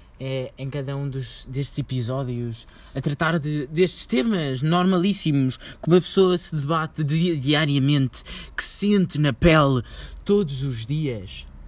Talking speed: 145 wpm